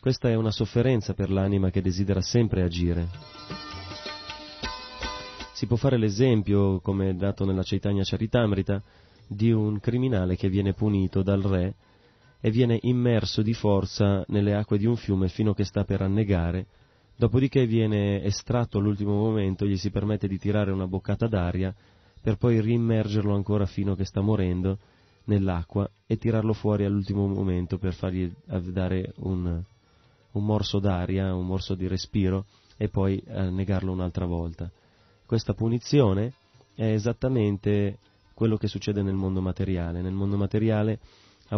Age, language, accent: 30-49, Italian, native